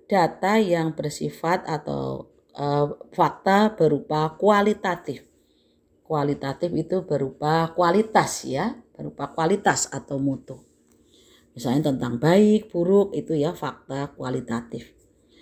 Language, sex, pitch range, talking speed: Indonesian, female, 145-225 Hz, 95 wpm